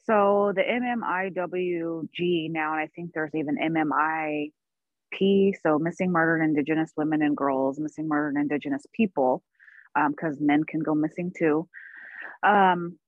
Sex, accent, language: female, American, English